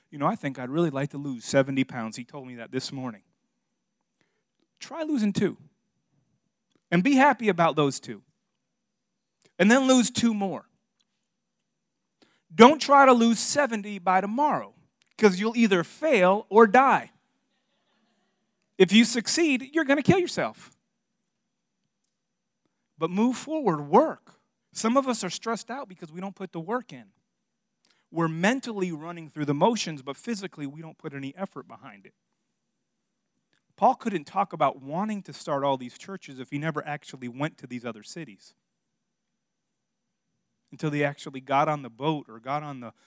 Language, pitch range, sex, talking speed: English, 145-220 Hz, male, 160 wpm